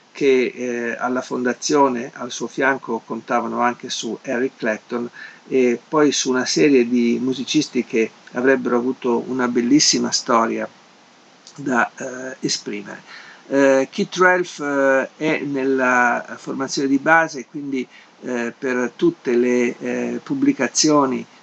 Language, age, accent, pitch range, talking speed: Italian, 50-69, native, 120-145 Hz, 125 wpm